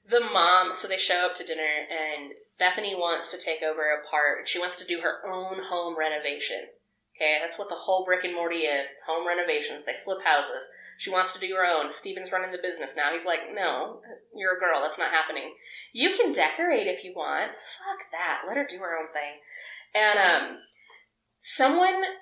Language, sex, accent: English, female, American